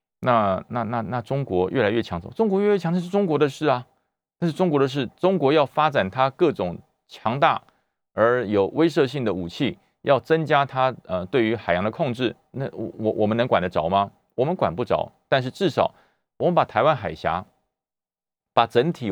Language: Chinese